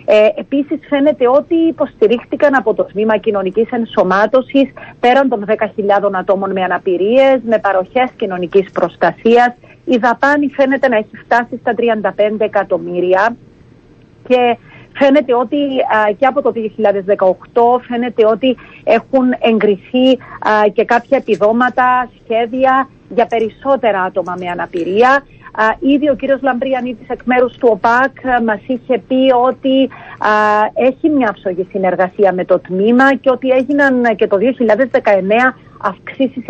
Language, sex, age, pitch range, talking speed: Greek, female, 40-59, 210-260 Hz, 120 wpm